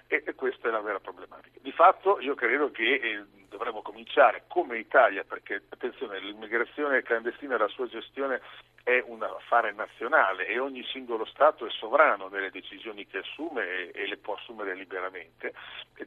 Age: 50-69